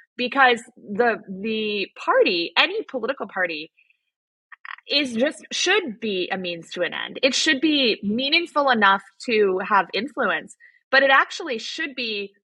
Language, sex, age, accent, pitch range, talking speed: English, female, 20-39, American, 220-305 Hz, 140 wpm